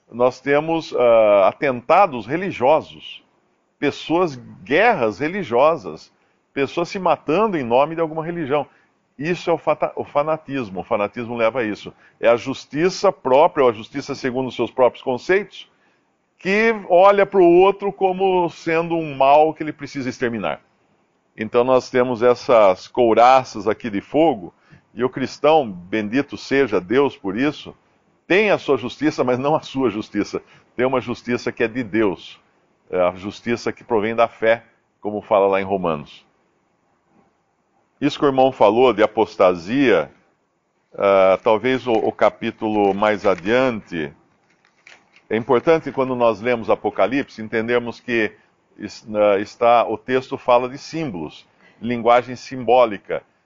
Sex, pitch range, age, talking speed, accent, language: male, 115-155 Hz, 50-69, 135 wpm, Brazilian, Portuguese